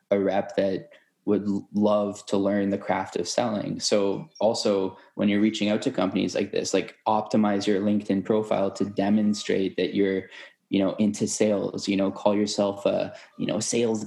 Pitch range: 100-115 Hz